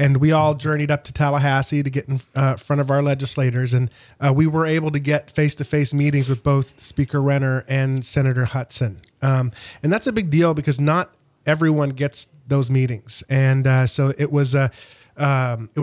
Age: 30-49